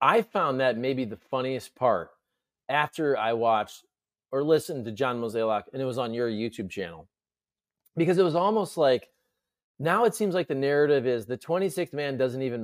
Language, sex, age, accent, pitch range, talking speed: English, male, 30-49, American, 130-200 Hz, 185 wpm